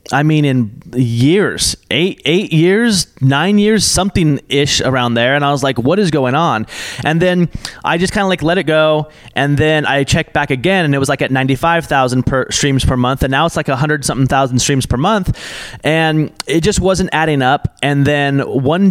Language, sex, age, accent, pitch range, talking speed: English, male, 20-39, American, 130-165 Hz, 205 wpm